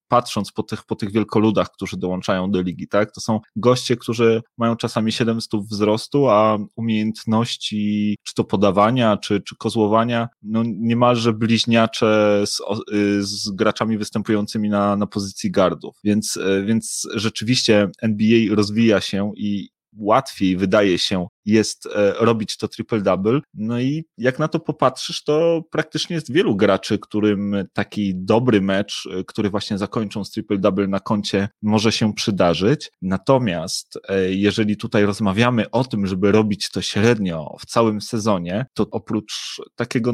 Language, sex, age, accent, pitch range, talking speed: Polish, male, 30-49, native, 105-115 Hz, 140 wpm